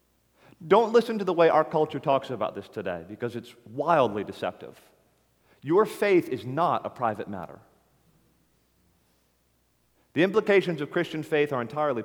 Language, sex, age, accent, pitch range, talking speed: English, male, 40-59, American, 115-160 Hz, 145 wpm